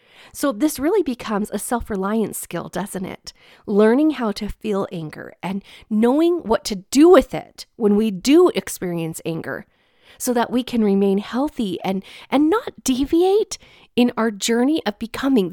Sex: female